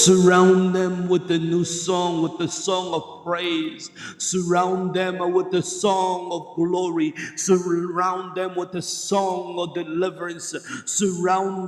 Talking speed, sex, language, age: 135 wpm, male, English, 50-69